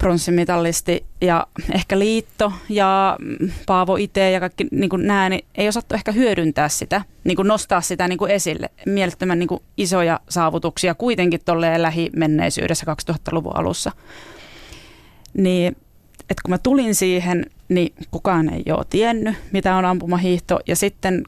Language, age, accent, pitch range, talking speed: Finnish, 30-49, native, 165-185 Hz, 130 wpm